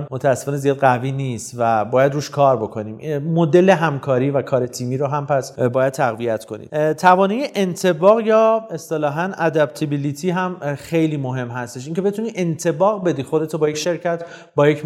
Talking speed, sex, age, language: 160 wpm, male, 40-59, English